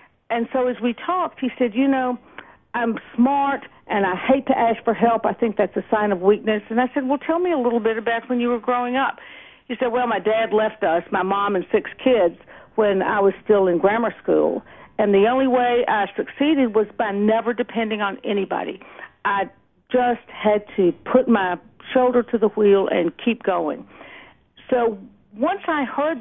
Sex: female